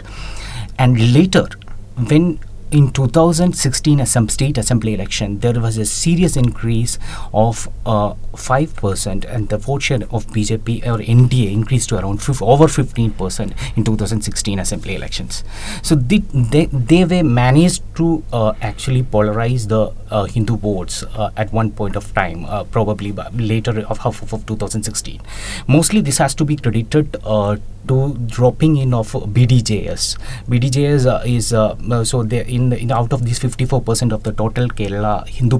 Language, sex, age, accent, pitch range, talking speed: English, male, 30-49, Indian, 105-130 Hz, 160 wpm